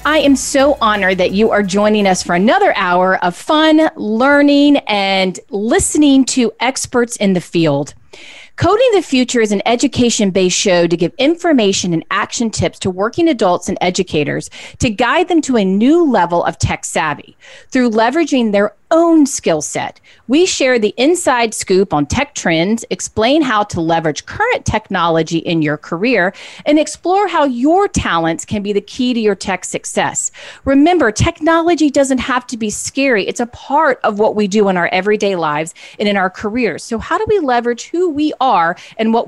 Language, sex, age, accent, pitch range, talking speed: English, female, 40-59, American, 185-280 Hz, 180 wpm